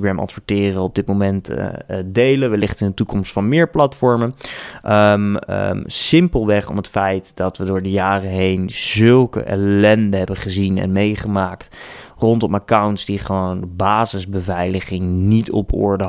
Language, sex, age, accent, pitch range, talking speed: Dutch, male, 20-39, Dutch, 95-110 Hz, 140 wpm